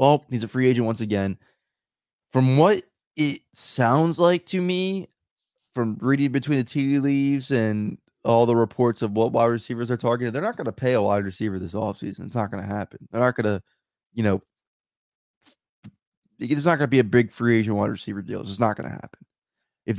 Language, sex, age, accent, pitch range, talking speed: English, male, 20-39, American, 110-140 Hz, 210 wpm